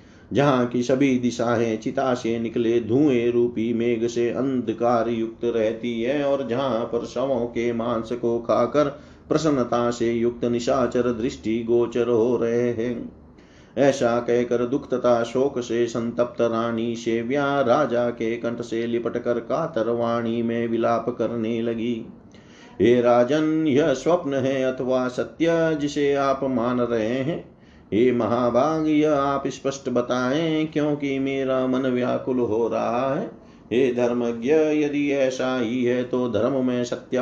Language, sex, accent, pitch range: Hindi, male, native, 115-135 Hz